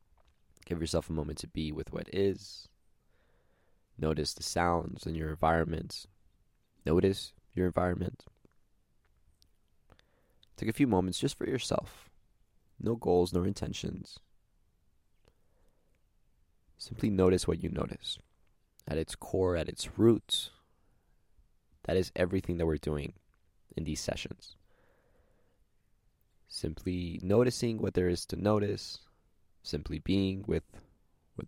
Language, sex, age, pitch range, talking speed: English, male, 20-39, 80-95 Hz, 115 wpm